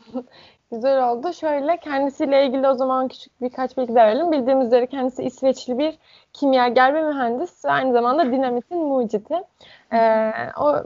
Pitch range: 235-295 Hz